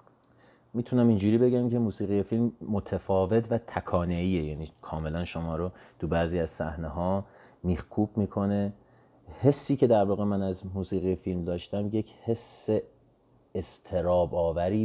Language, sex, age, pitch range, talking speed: English, male, 30-49, 80-95 Hz, 135 wpm